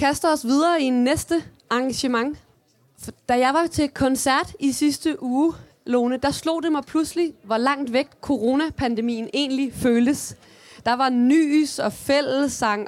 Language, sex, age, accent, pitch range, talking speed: Danish, female, 30-49, native, 235-285 Hz, 155 wpm